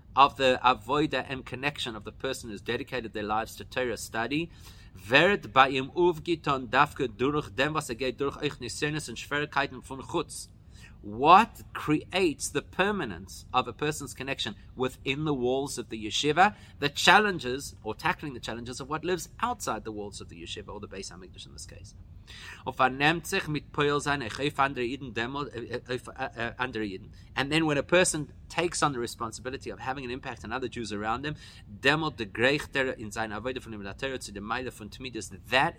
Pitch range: 110-145 Hz